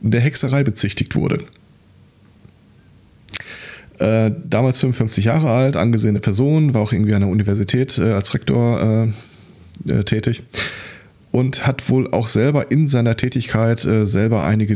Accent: German